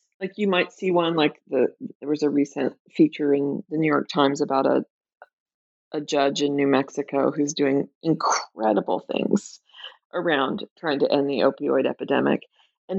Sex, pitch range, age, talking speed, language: female, 150-195 Hz, 40-59, 165 wpm, English